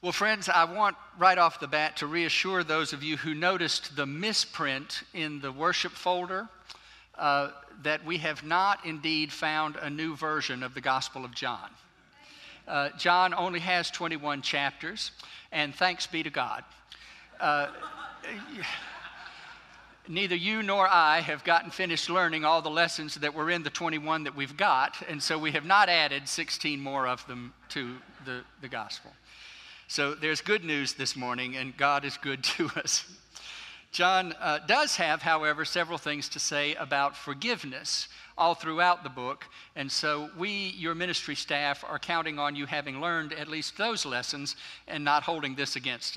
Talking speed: 170 wpm